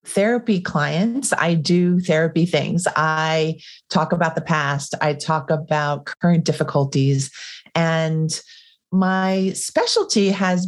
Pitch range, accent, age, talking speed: 140-165 Hz, American, 40-59, 110 wpm